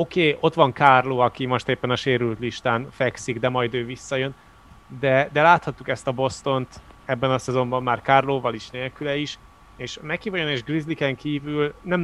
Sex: male